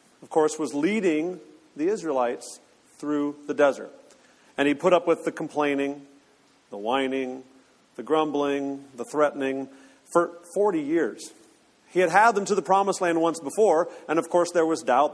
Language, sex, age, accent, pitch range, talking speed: English, male, 40-59, American, 140-185 Hz, 165 wpm